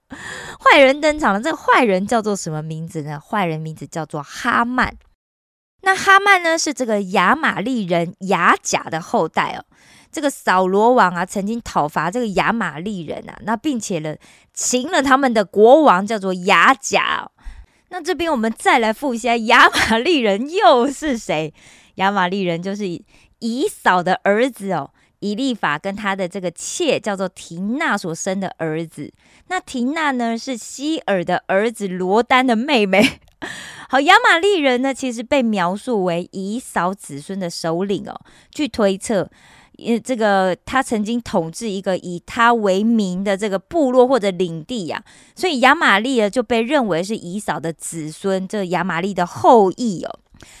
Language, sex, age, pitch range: Korean, female, 20-39, 185-255 Hz